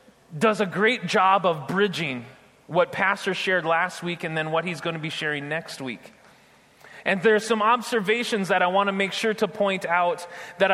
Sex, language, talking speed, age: male, English, 200 wpm, 30-49